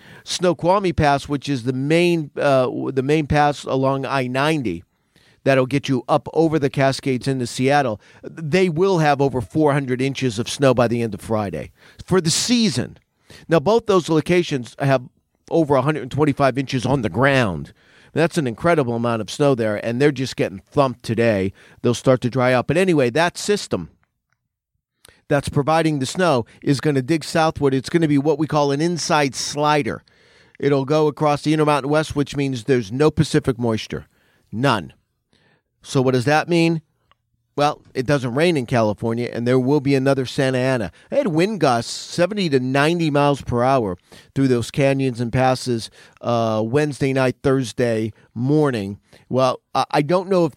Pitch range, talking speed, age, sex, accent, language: 120-150 Hz, 170 wpm, 50-69, male, American, English